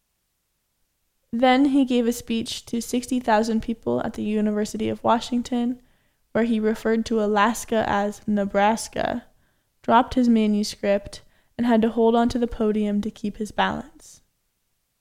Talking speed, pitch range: 140 wpm, 210-235 Hz